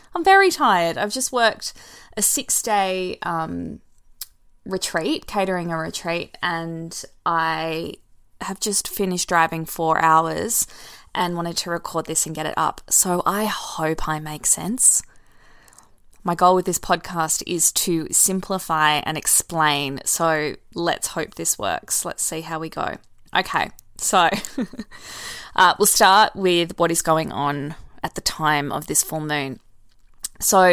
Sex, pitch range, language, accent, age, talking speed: female, 160-190 Hz, English, Australian, 20-39, 145 wpm